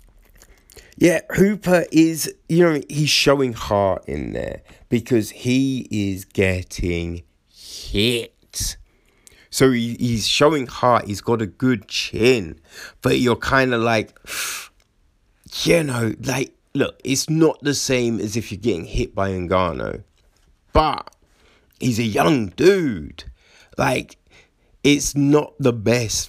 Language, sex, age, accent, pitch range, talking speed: English, male, 30-49, British, 100-135 Hz, 125 wpm